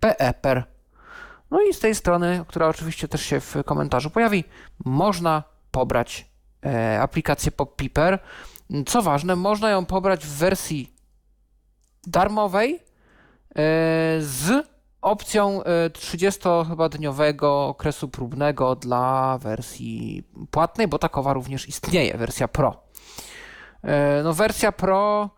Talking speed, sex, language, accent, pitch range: 100 wpm, male, Polish, native, 135-185 Hz